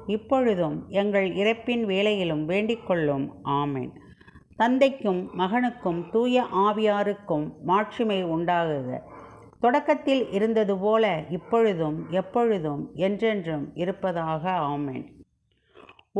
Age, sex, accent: 50-69, female, native